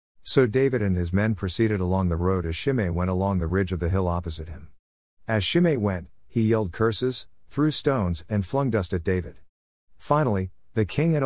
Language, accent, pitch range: English, American, 90-130 Hz